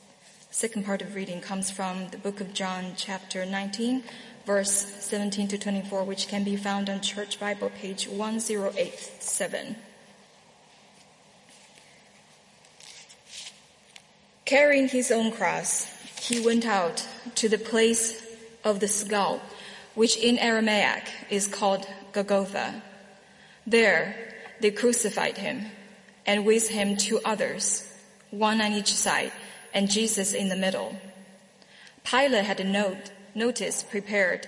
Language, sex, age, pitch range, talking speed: English, female, 20-39, 195-225 Hz, 120 wpm